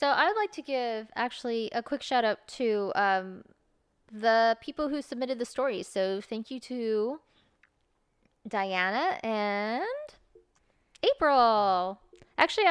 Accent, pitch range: American, 195-245 Hz